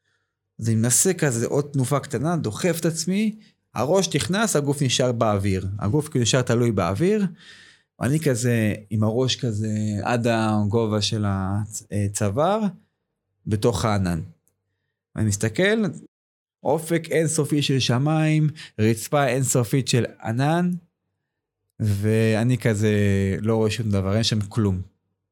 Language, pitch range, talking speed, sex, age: Hebrew, 105-145 Hz, 115 wpm, male, 30-49